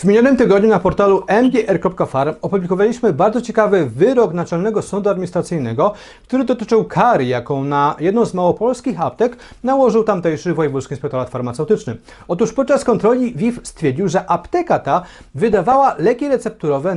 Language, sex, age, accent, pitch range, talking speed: Polish, male, 40-59, native, 155-225 Hz, 135 wpm